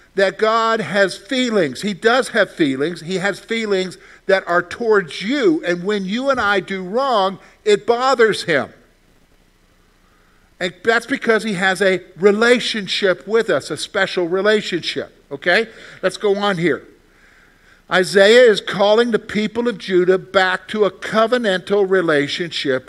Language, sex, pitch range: English, male, 175-230 Hz